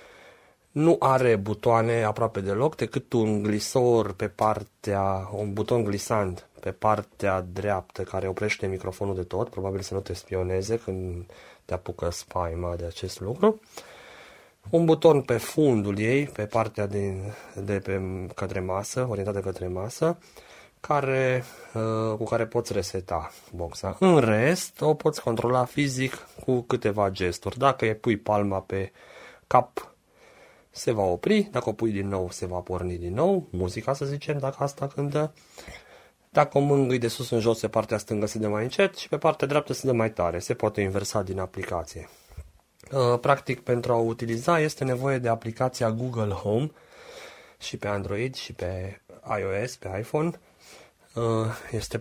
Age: 30-49